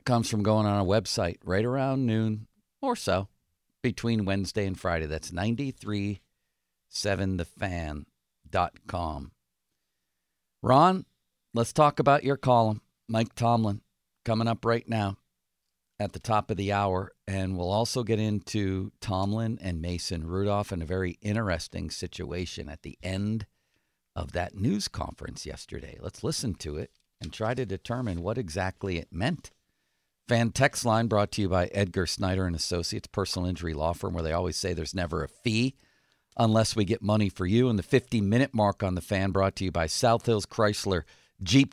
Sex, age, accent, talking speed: male, 50-69, American, 160 wpm